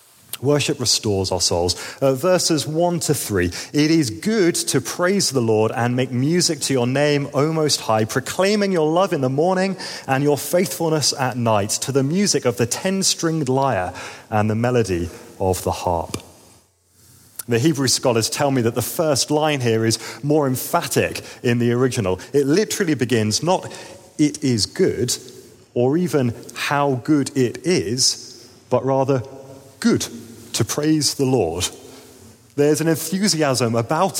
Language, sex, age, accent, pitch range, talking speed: English, male, 30-49, British, 115-155 Hz, 160 wpm